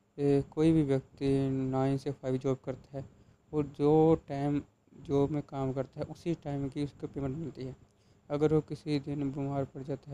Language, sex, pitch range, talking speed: Punjabi, male, 125-145 Hz, 185 wpm